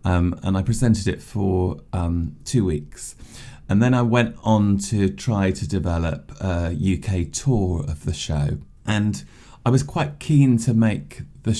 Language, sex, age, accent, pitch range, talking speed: English, male, 30-49, British, 80-105 Hz, 165 wpm